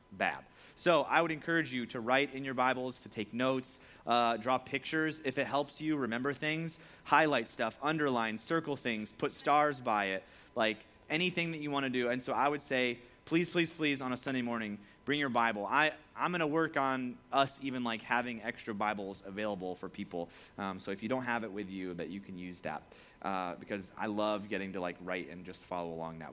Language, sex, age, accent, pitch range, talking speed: English, male, 30-49, American, 100-140 Hz, 215 wpm